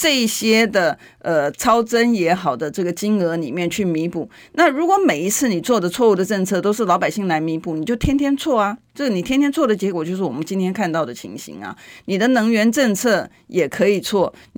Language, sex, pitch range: Chinese, female, 175-230 Hz